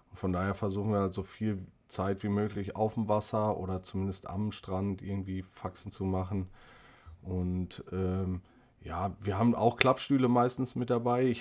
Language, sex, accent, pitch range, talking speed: German, male, German, 95-115 Hz, 170 wpm